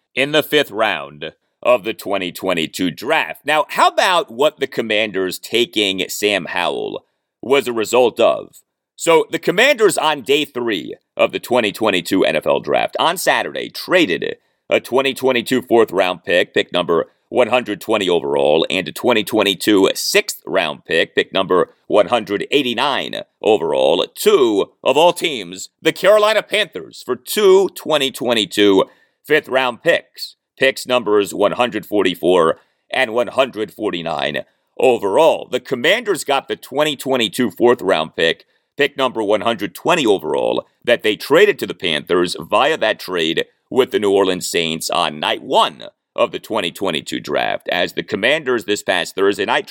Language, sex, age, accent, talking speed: English, male, 40-59, American, 135 wpm